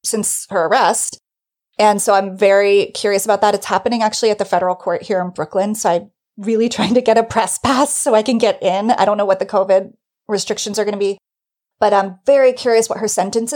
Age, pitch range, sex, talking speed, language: 30-49, 200-250 Hz, female, 230 wpm, English